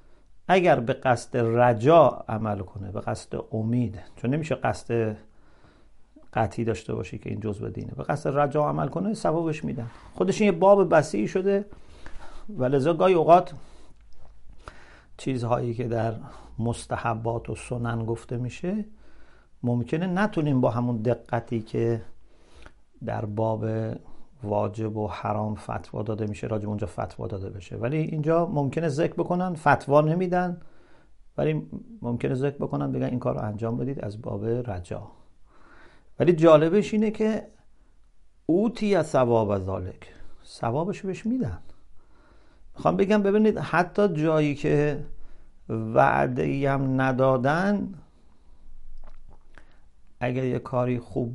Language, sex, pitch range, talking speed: English, male, 110-160 Hz, 125 wpm